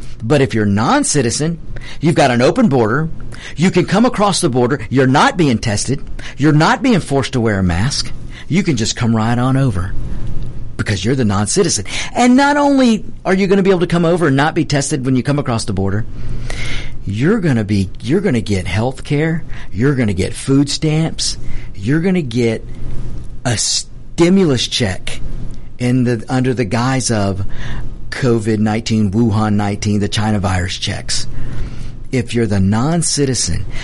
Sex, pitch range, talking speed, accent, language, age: male, 110-140 Hz, 195 wpm, American, English, 50-69